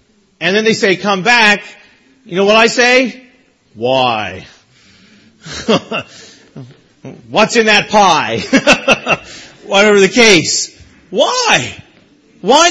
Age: 40-59